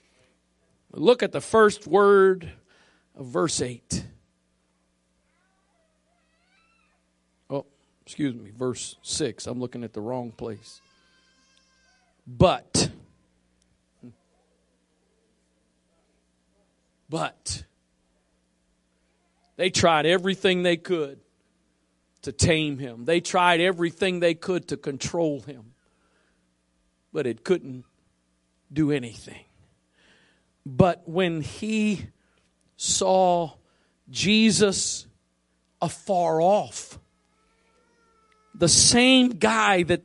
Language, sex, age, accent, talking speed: English, male, 50-69, American, 80 wpm